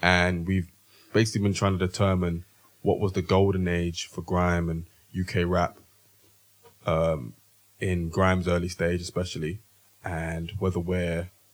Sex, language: male, English